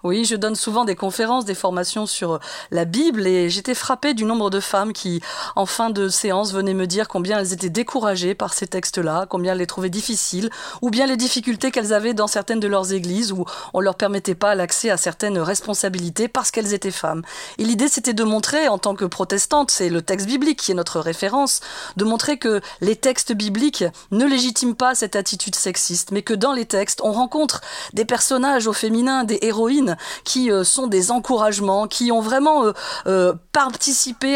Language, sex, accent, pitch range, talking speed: French, female, French, 195-235 Hz, 200 wpm